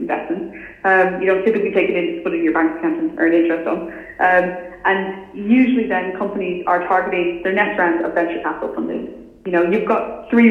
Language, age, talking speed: English, 20-39, 200 wpm